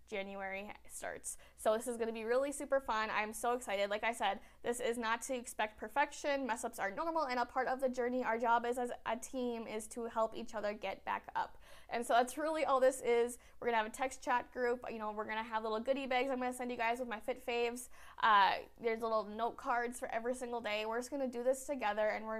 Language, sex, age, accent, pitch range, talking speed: English, female, 20-39, American, 215-245 Hz, 250 wpm